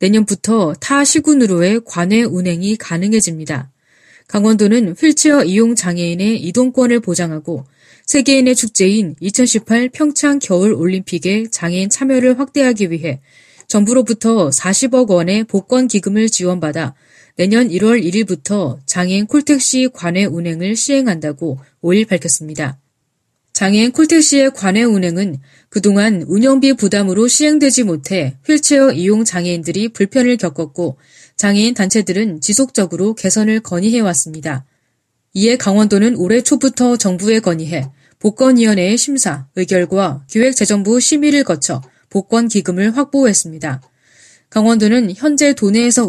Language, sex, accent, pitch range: Korean, female, native, 175-240 Hz